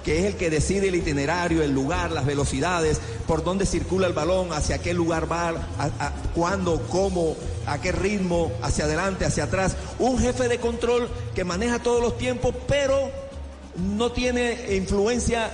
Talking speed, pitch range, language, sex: 160 wpm, 160-210 Hz, Spanish, male